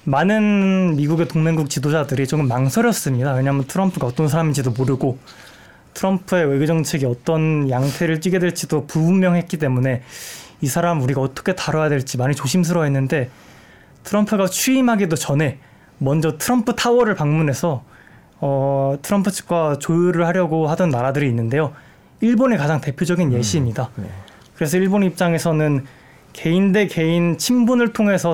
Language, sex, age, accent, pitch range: Korean, male, 20-39, native, 140-185 Hz